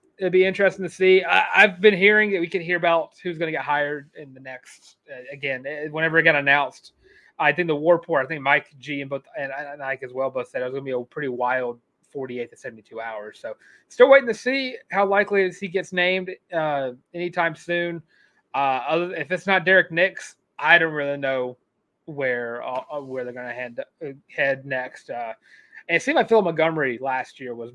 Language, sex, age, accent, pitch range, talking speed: English, male, 30-49, American, 125-175 Hz, 220 wpm